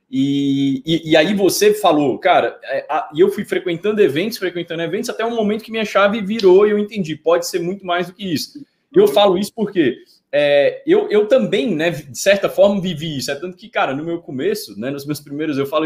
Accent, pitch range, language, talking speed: Brazilian, 160-230 Hz, Portuguese, 225 wpm